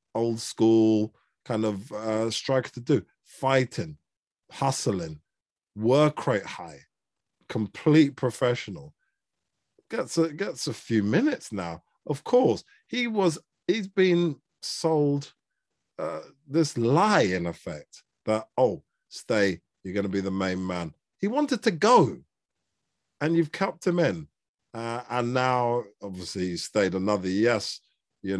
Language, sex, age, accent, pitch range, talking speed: English, male, 50-69, British, 95-145 Hz, 130 wpm